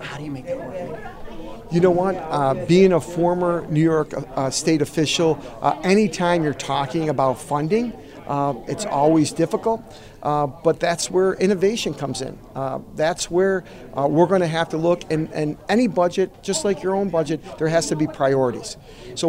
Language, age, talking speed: English, 50-69, 185 wpm